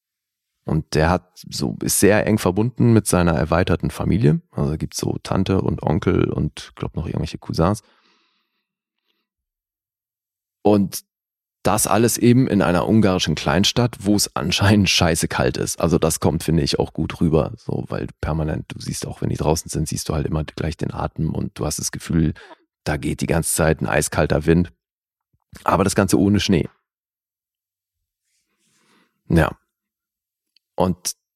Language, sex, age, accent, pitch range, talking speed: German, male, 30-49, German, 90-105 Hz, 155 wpm